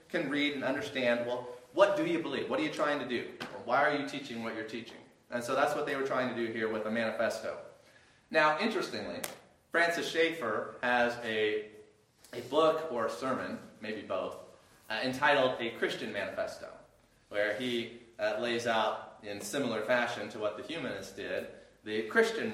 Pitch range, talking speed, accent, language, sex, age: 115-160 Hz, 185 wpm, American, English, male, 30-49